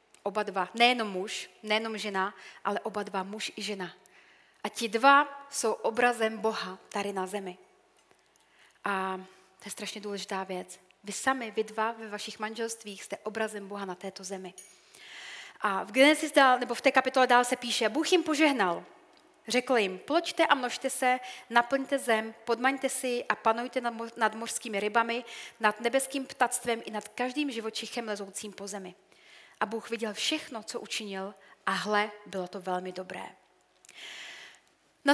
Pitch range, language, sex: 210-255 Hz, Czech, female